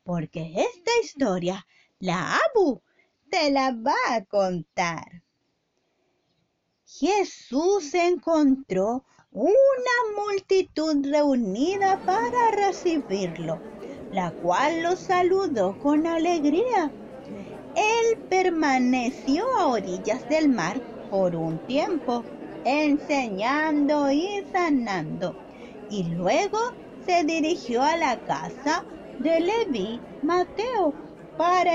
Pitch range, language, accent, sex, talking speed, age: 240-350 Hz, Spanish, American, female, 85 wpm, 30-49